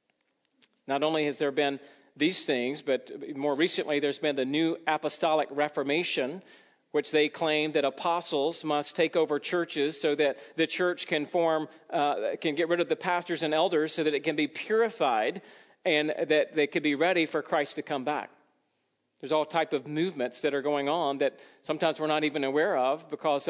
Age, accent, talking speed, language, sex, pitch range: 40-59, American, 190 wpm, English, male, 150-175 Hz